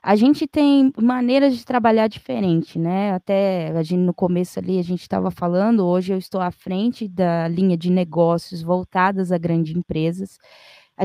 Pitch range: 180-240 Hz